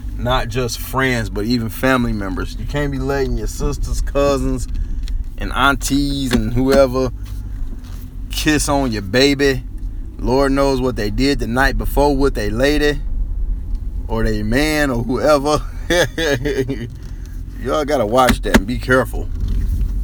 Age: 20-39